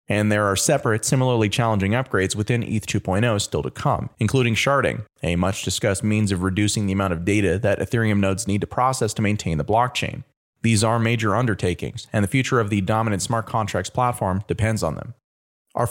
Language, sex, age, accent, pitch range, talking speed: English, male, 30-49, American, 95-120 Hz, 190 wpm